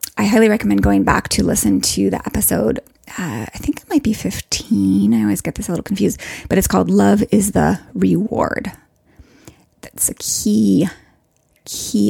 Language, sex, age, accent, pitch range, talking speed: English, female, 20-39, American, 190-245 Hz, 175 wpm